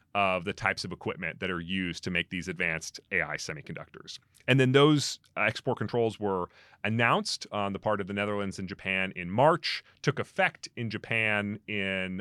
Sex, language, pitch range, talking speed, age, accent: male, English, 95-130 Hz, 175 wpm, 30-49, American